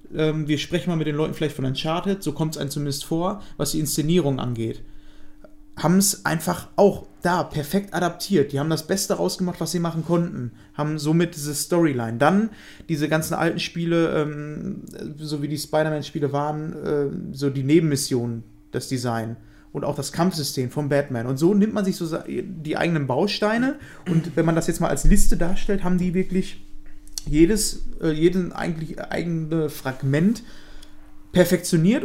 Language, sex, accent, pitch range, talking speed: German, male, German, 150-195 Hz, 155 wpm